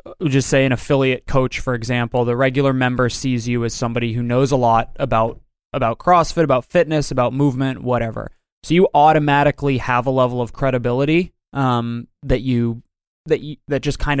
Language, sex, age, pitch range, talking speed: English, male, 20-39, 120-145 Hz, 175 wpm